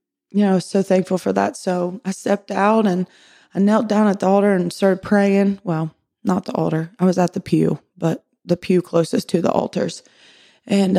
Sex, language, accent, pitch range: female, English, American, 180-205 Hz